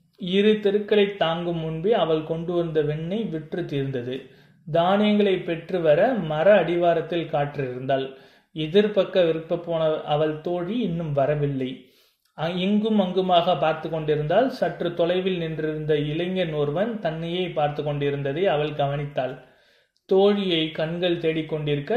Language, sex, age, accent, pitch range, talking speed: Tamil, male, 30-49, native, 150-185 Hz, 105 wpm